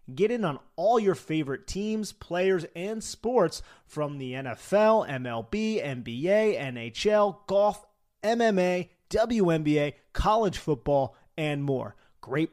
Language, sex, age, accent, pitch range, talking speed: English, male, 30-49, American, 140-205 Hz, 115 wpm